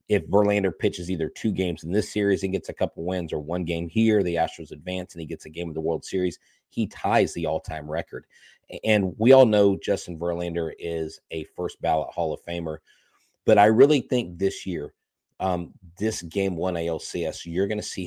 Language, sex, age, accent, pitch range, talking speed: English, male, 30-49, American, 85-105 Hz, 205 wpm